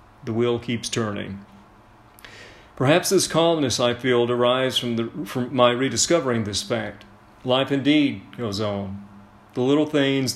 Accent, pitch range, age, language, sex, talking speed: American, 105-130 Hz, 40-59, English, male, 135 wpm